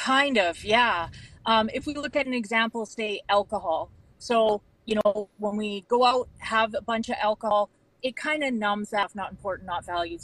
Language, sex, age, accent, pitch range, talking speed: English, female, 30-49, American, 200-240 Hz, 200 wpm